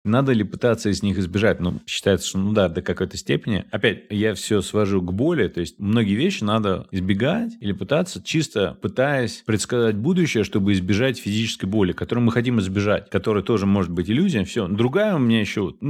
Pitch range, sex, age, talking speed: 95-115 Hz, male, 30-49, 190 wpm